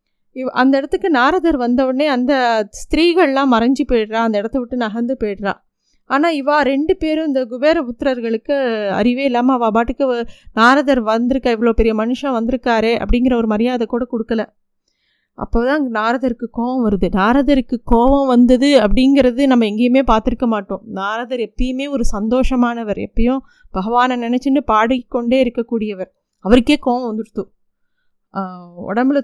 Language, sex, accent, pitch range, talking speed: Tamil, female, native, 225-275 Hz, 125 wpm